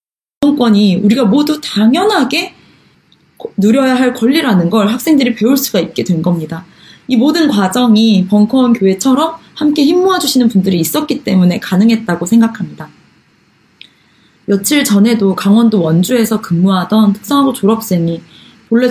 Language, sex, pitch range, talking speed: English, female, 190-265 Hz, 110 wpm